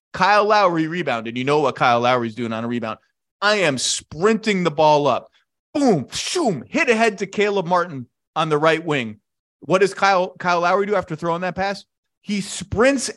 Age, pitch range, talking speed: 30-49, 165-225 Hz, 185 wpm